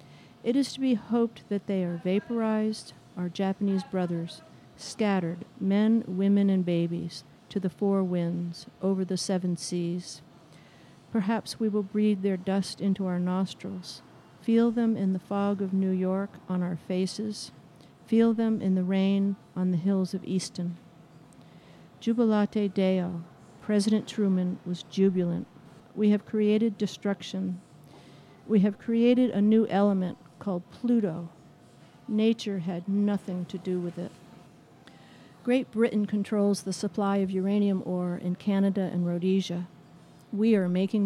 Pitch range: 175-205 Hz